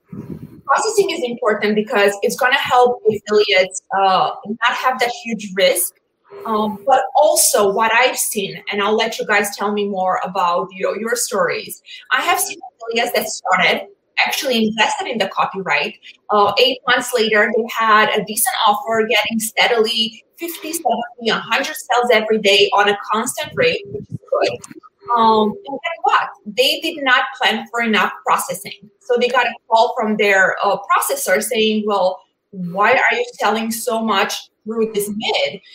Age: 20-39